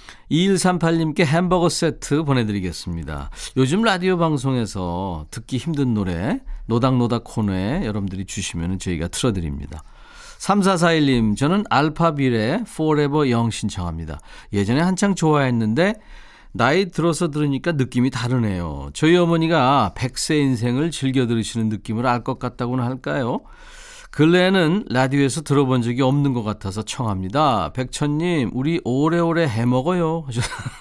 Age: 40-59